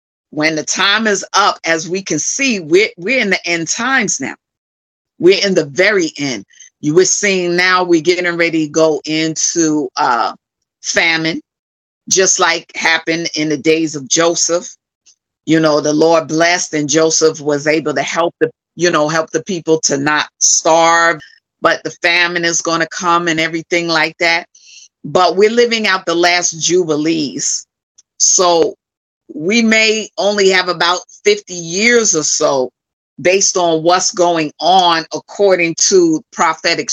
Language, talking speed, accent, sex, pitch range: English, 155 wpm, American, female, 160-190 Hz